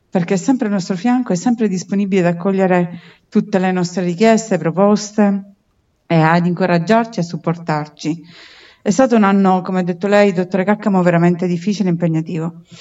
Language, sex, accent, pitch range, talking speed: Italian, female, native, 170-205 Hz, 165 wpm